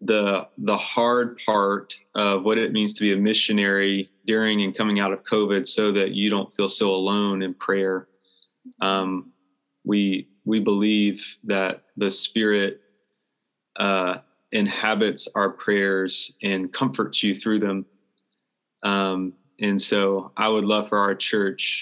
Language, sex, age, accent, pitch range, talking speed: English, male, 20-39, American, 95-105 Hz, 145 wpm